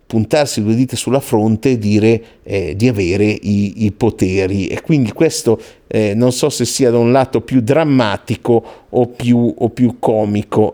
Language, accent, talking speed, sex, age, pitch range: Italian, native, 175 wpm, male, 50-69, 110-135 Hz